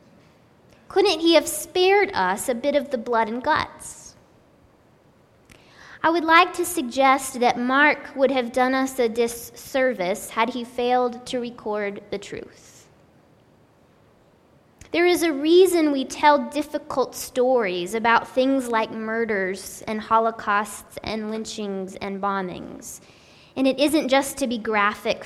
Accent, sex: American, female